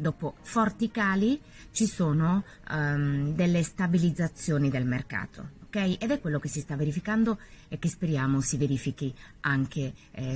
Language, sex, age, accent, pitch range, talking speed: Italian, female, 30-49, native, 135-170 Hz, 135 wpm